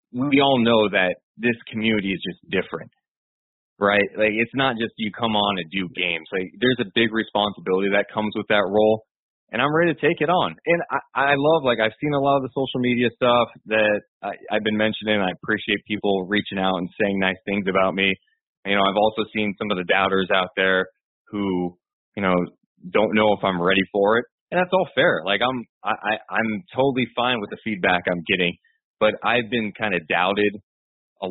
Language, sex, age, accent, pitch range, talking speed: English, male, 20-39, American, 100-130 Hz, 215 wpm